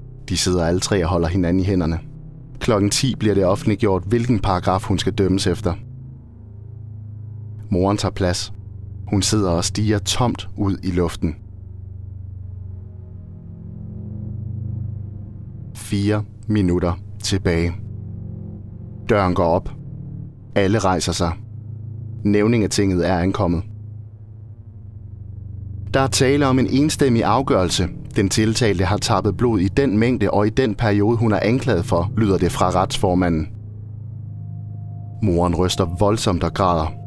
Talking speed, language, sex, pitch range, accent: 125 wpm, Danish, male, 95-110 Hz, native